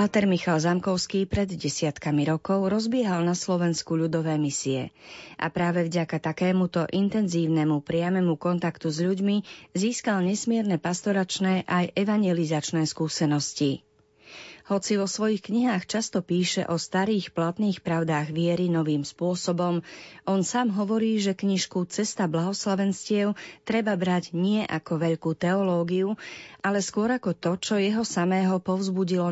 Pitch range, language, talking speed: 160-195 Hz, Slovak, 125 wpm